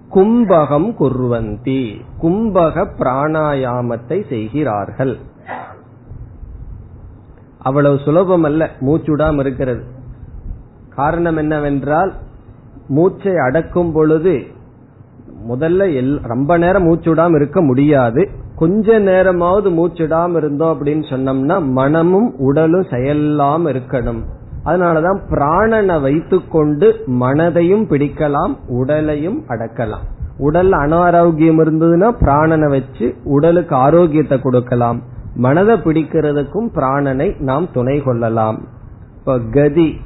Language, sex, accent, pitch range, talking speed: Tamil, male, native, 125-165 Hz, 80 wpm